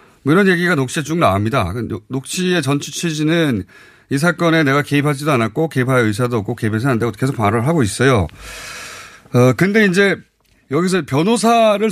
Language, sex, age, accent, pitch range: Korean, male, 30-49, native, 120-180 Hz